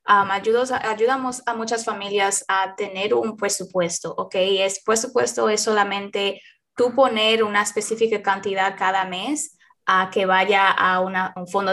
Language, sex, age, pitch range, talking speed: English, female, 20-39, 205-240 Hz, 150 wpm